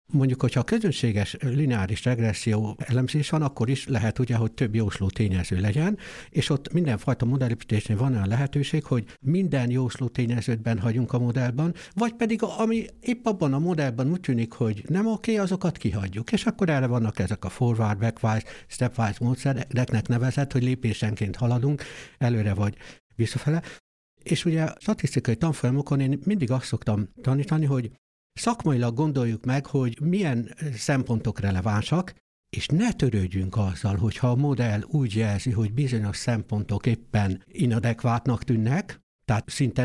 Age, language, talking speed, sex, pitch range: 60-79, Hungarian, 150 wpm, male, 115-150 Hz